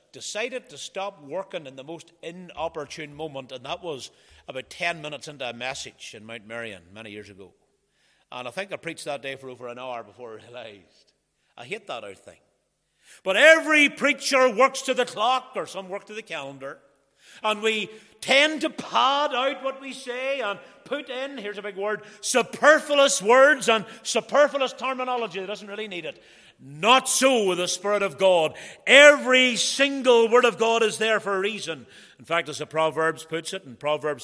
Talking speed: 190 wpm